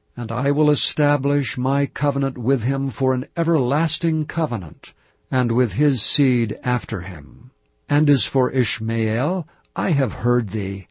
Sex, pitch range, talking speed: male, 115-145 Hz, 145 wpm